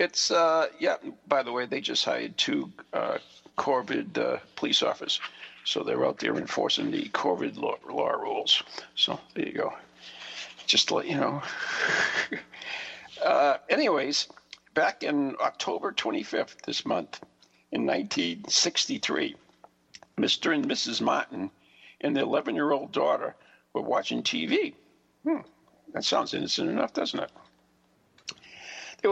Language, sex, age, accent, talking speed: English, male, 60-79, American, 130 wpm